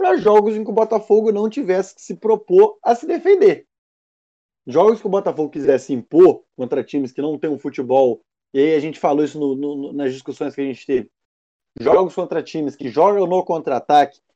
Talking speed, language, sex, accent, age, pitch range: 200 wpm, Portuguese, male, Brazilian, 20-39, 145-200 Hz